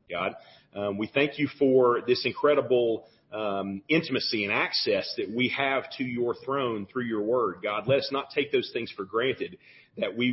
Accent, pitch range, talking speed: American, 105-140 Hz, 185 wpm